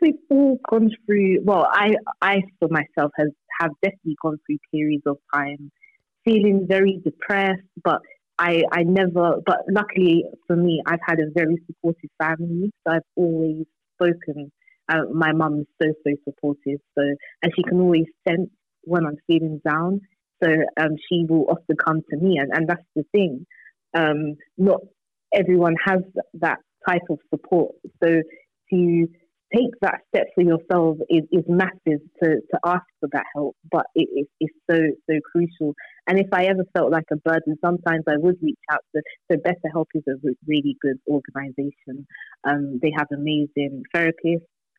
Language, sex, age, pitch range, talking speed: English, female, 30-49, 155-180 Hz, 165 wpm